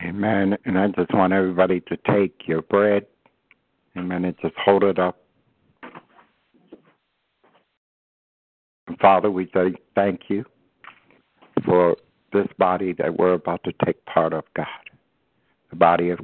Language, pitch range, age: English, 85-95 Hz, 60-79